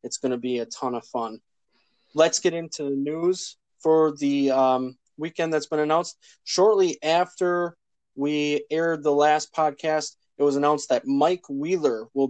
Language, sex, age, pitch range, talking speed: English, male, 20-39, 135-160 Hz, 165 wpm